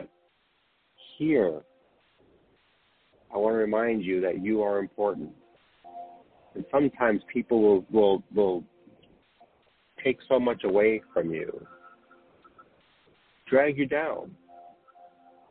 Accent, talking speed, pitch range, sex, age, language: American, 95 wpm, 90-120 Hz, male, 50-69, English